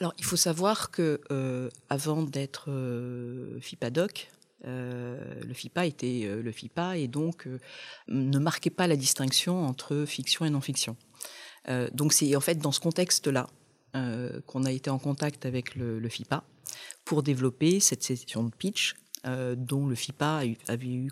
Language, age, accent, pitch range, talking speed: French, 40-59, French, 125-155 Hz, 155 wpm